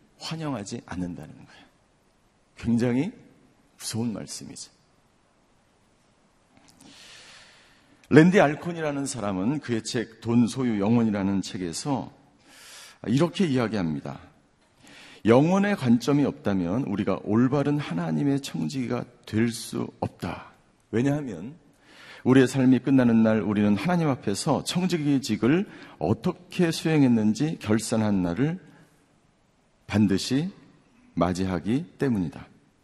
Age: 50-69